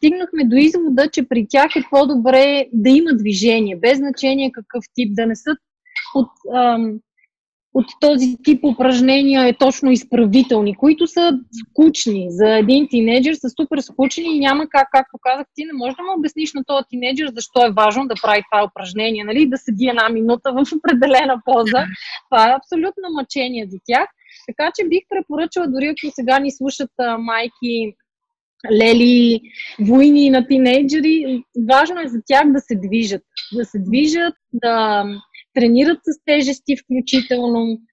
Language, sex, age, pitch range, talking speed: Bulgarian, female, 20-39, 230-290 Hz, 160 wpm